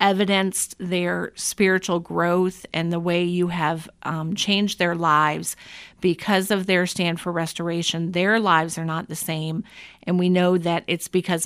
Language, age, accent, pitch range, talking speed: English, 40-59, American, 170-190 Hz, 160 wpm